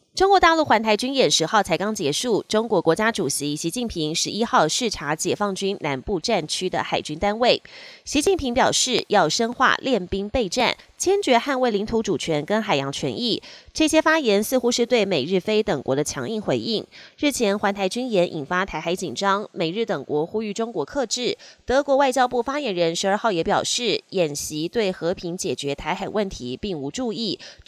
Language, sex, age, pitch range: Chinese, female, 20-39, 170-245 Hz